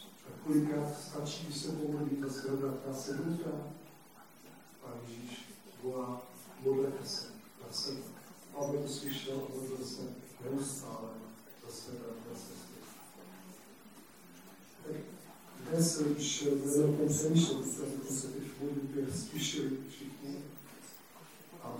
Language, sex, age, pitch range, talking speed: Czech, male, 50-69, 130-145 Hz, 95 wpm